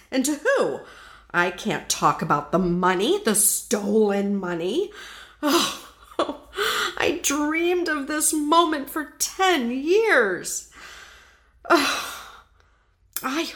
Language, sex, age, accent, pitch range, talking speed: English, female, 50-69, American, 210-335 Hz, 100 wpm